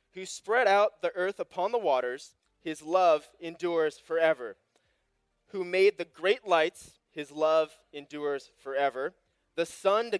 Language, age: English, 20-39